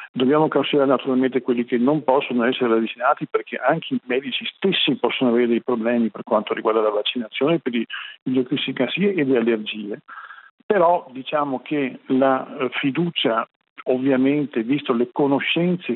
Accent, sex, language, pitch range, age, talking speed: native, male, Italian, 120-150 Hz, 50-69, 145 wpm